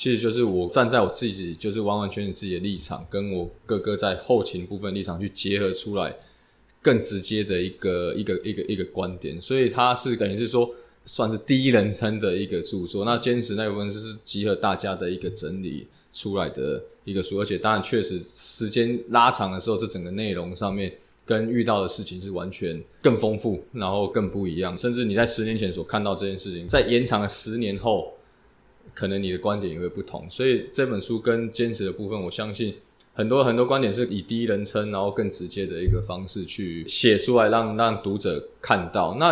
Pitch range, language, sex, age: 100-120 Hz, Chinese, male, 20-39